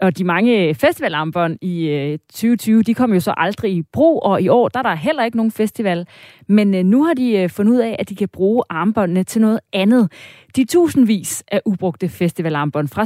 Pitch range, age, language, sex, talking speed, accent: 170-230 Hz, 30-49, Danish, female, 200 wpm, native